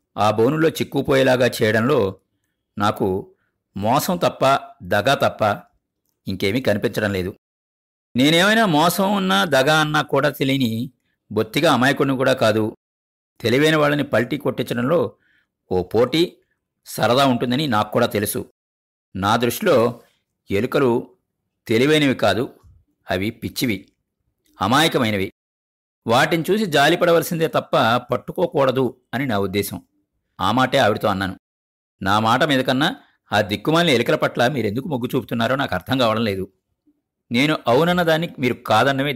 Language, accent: Telugu, native